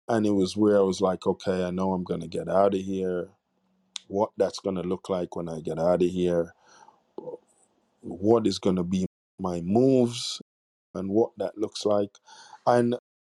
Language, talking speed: English, 190 wpm